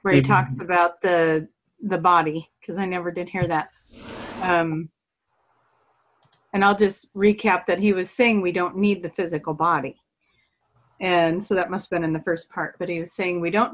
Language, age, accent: English, 40-59, American